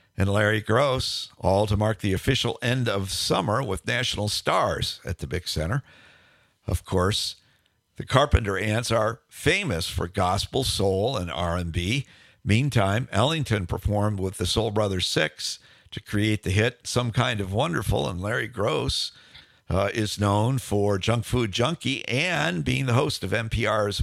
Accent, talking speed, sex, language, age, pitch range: American, 155 wpm, male, English, 50-69, 95-120 Hz